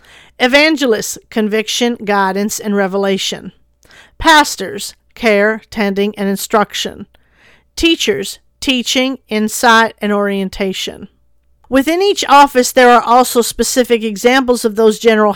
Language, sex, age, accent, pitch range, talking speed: English, female, 50-69, American, 205-245 Hz, 100 wpm